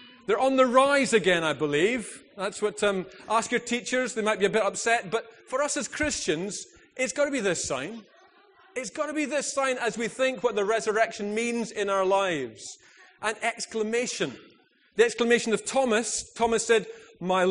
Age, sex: 30-49, male